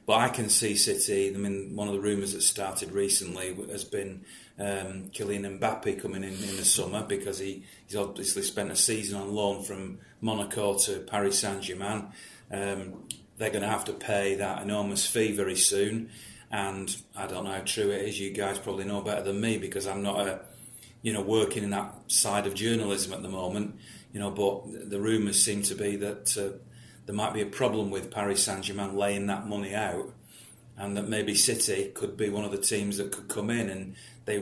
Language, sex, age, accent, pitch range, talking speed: English, male, 40-59, British, 100-105 Hz, 205 wpm